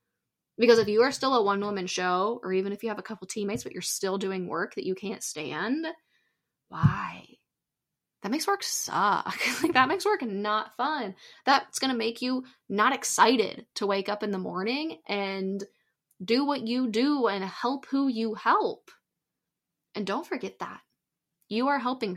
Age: 10-29